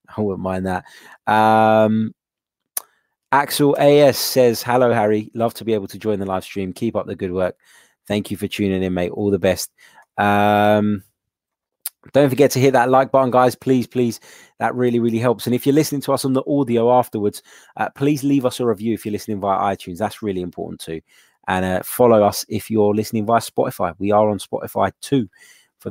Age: 20-39